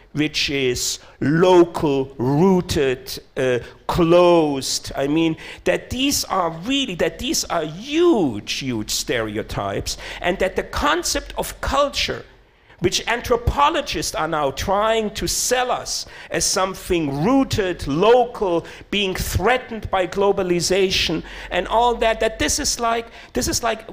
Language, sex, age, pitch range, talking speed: German, male, 50-69, 140-215 Hz, 125 wpm